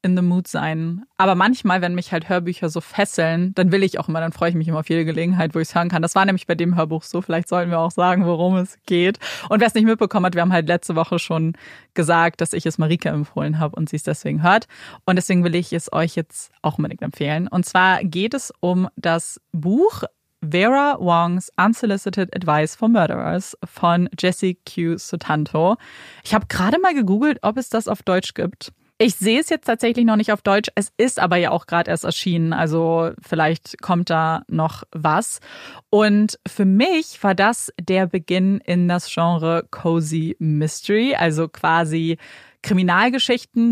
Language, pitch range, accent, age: German, 170-200 Hz, German, 20-39